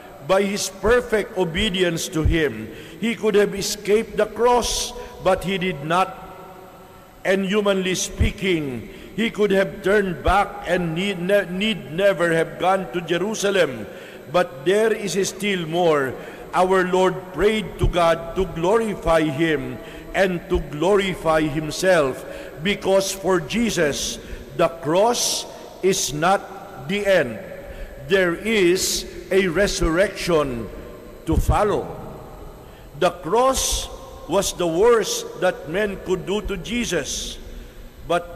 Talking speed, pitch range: 120 wpm, 170-200 Hz